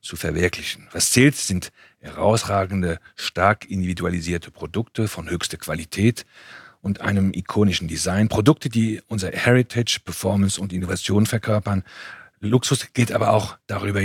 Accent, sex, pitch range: German, male, 90-105 Hz